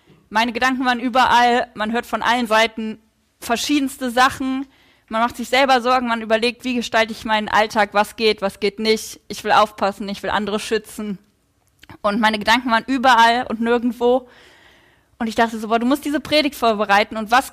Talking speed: 185 wpm